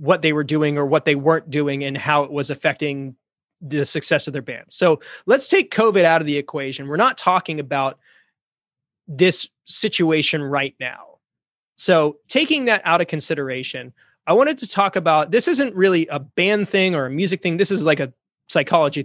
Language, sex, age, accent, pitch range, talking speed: English, male, 20-39, American, 145-185 Hz, 190 wpm